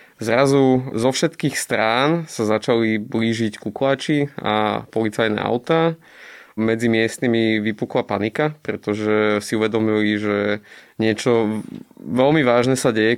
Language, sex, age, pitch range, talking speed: Slovak, male, 20-39, 110-130 Hz, 110 wpm